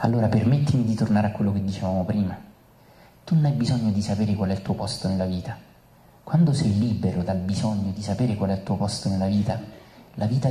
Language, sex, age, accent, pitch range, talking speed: Italian, male, 30-49, native, 100-120 Hz, 215 wpm